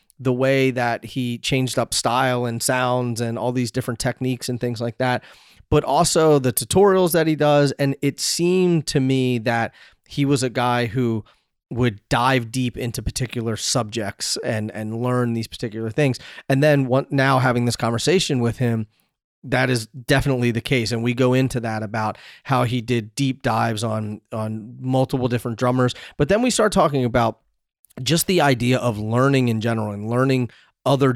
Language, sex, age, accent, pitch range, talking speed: English, male, 30-49, American, 115-135 Hz, 180 wpm